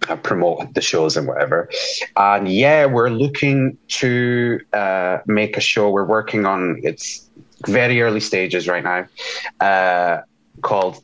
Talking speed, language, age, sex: 135 wpm, English, 30-49, male